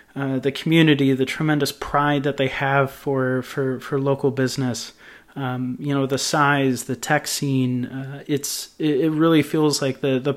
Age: 30-49